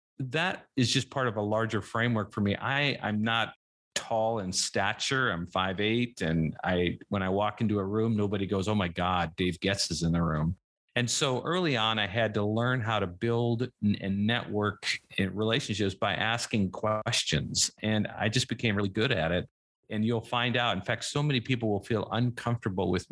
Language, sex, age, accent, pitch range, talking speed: English, male, 40-59, American, 95-115 Hz, 195 wpm